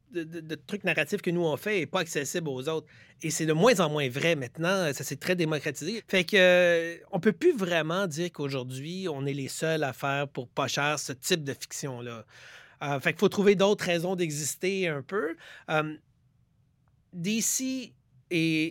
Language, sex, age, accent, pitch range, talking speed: French, male, 30-49, Canadian, 145-180 Hz, 195 wpm